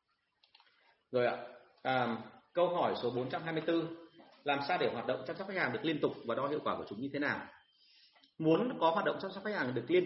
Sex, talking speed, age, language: male, 225 wpm, 30-49, Vietnamese